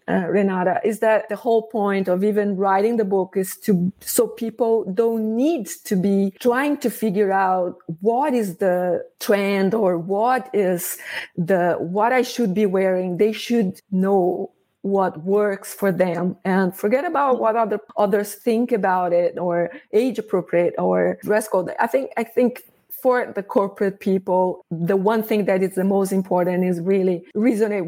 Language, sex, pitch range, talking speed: English, female, 185-215 Hz, 170 wpm